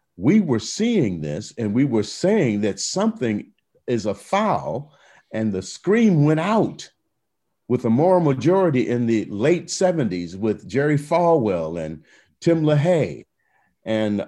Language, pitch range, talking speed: English, 100-150 Hz, 140 wpm